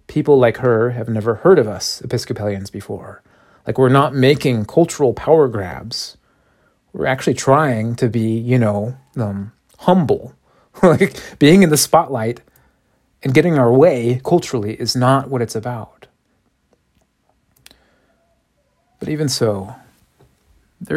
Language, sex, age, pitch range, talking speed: English, male, 40-59, 115-145 Hz, 130 wpm